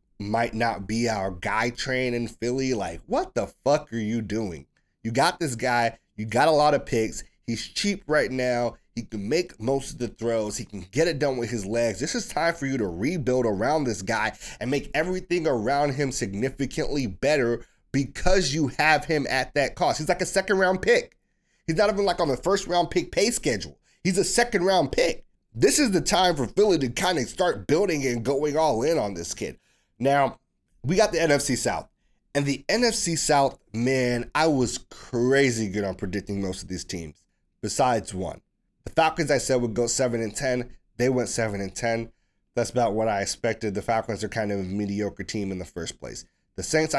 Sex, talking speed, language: male, 210 wpm, English